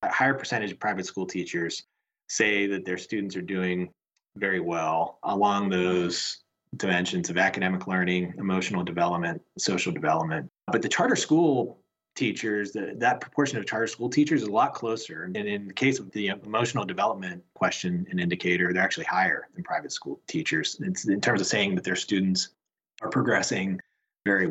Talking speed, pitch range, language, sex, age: 165 wpm, 90-110 Hz, English, male, 30-49